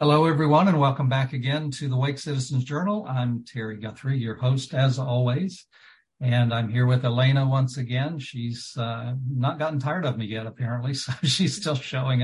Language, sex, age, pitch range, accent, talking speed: English, male, 60-79, 120-140 Hz, American, 185 wpm